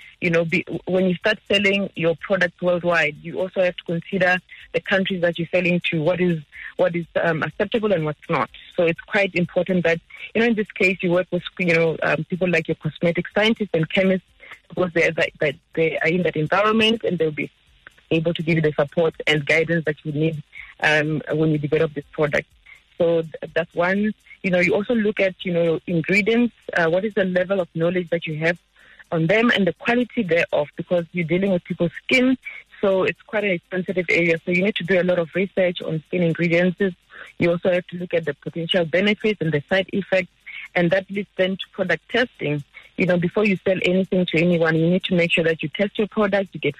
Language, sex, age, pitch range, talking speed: English, female, 30-49, 165-195 Hz, 220 wpm